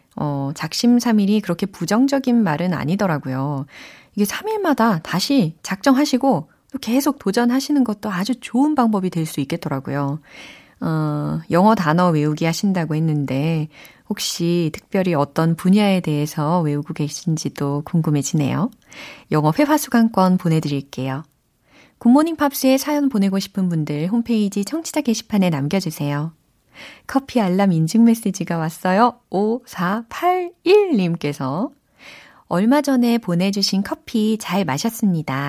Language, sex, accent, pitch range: Korean, female, native, 160-230 Hz